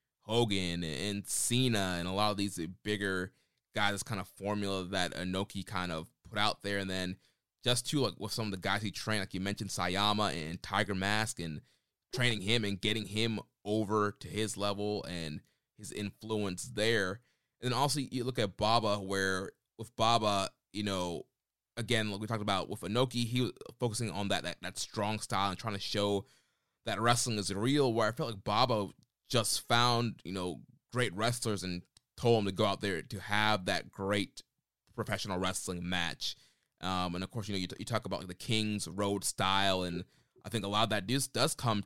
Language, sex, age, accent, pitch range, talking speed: English, male, 20-39, American, 95-115 Hz, 200 wpm